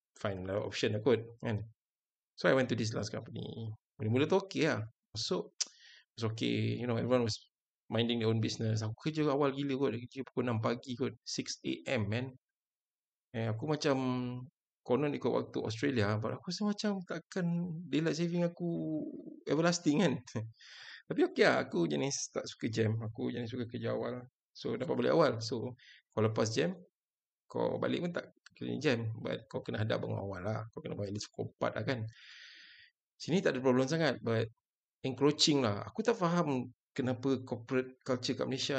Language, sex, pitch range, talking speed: Malay, male, 115-150 Hz, 175 wpm